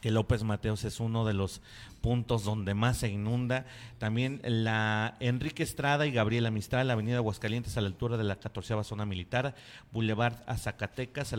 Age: 40-59